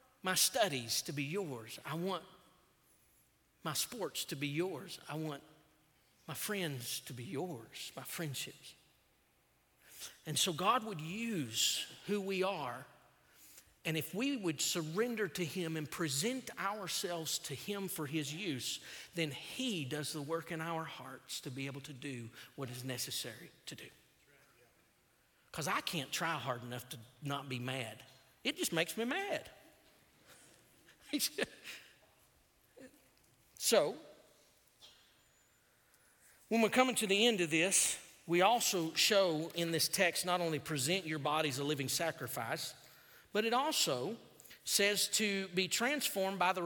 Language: English